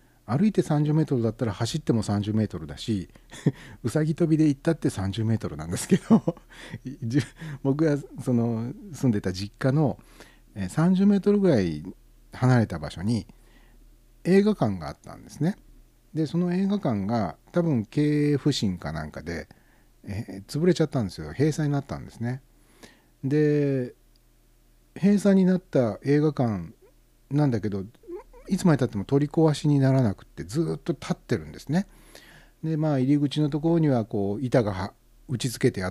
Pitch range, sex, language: 95-150 Hz, male, Japanese